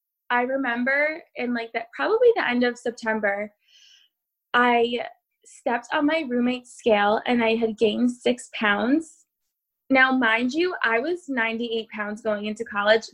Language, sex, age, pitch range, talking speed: English, female, 20-39, 225-265 Hz, 145 wpm